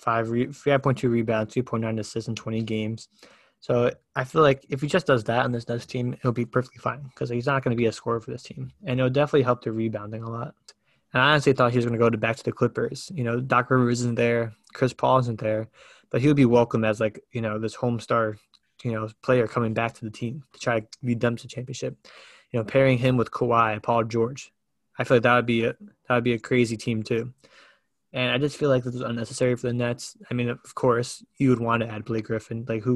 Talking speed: 255 wpm